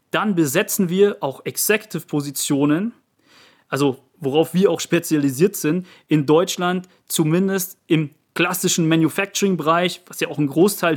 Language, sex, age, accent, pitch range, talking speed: German, male, 30-49, German, 155-185 Hz, 120 wpm